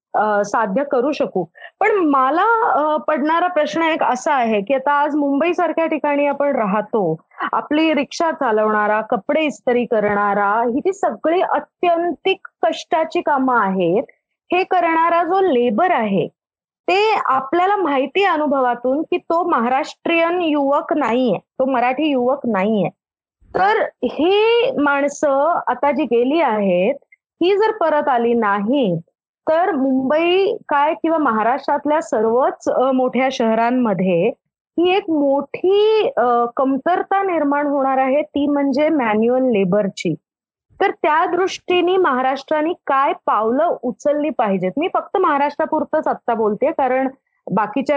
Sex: female